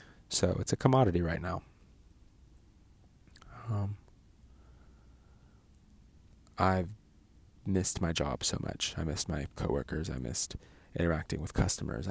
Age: 30-49